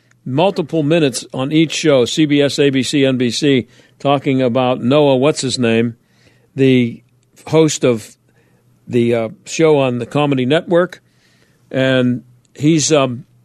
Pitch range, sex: 125-155 Hz, male